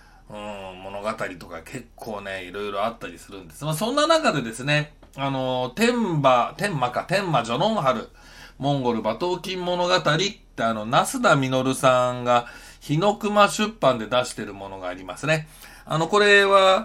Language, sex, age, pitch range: Japanese, male, 40-59, 115-165 Hz